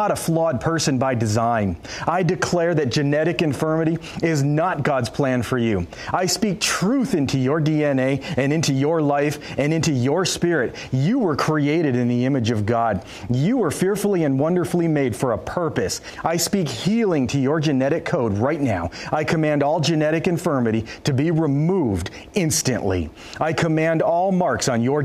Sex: male